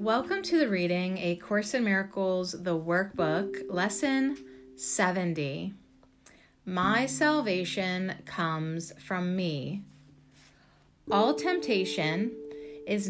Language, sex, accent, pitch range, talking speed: English, female, American, 155-205 Hz, 90 wpm